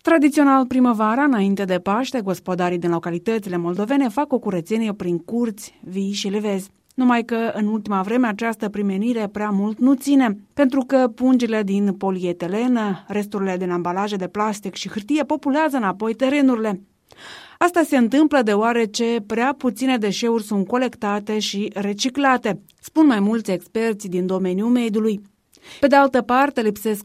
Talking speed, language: 145 wpm, Romanian